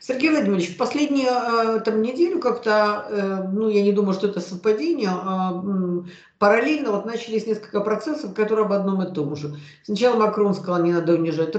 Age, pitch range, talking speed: 50-69, 160-205 Hz, 155 wpm